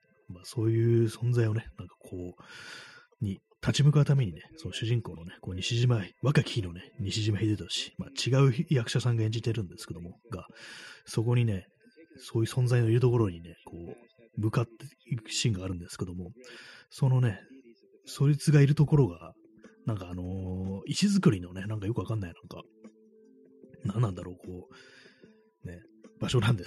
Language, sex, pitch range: Japanese, male, 95-135 Hz